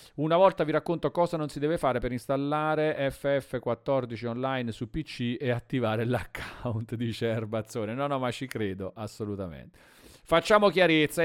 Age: 40-59